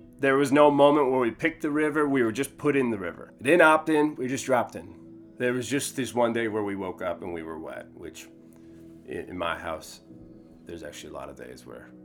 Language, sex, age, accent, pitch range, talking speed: English, male, 30-49, American, 105-145 Hz, 240 wpm